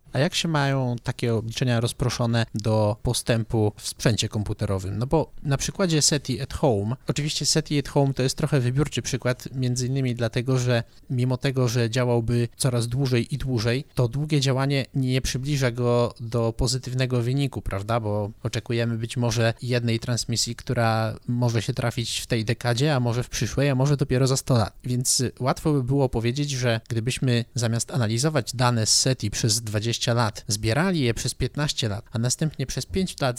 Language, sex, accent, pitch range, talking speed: Polish, male, native, 115-135 Hz, 175 wpm